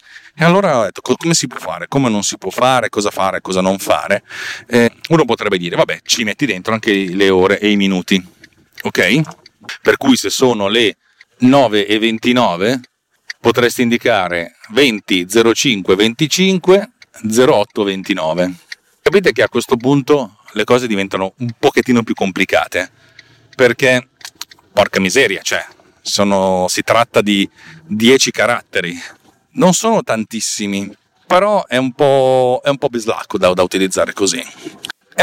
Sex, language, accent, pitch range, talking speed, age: male, Italian, native, 100-135 Hz, 145 wpm, 40-59